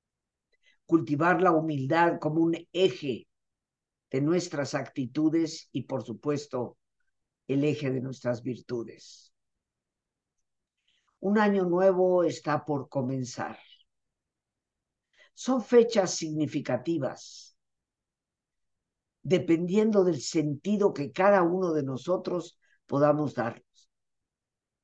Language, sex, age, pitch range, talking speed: Spanish, female, 50-69, 135-175 Hz, 85 wpm